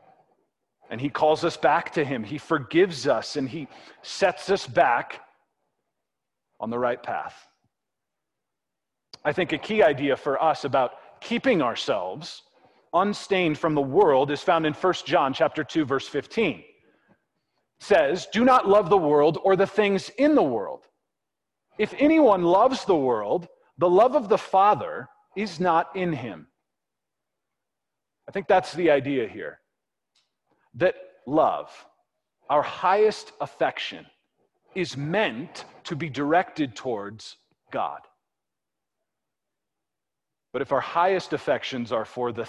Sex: male